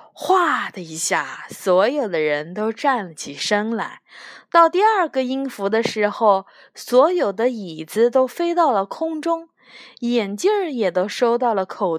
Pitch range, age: 195-295 Hz, 20-39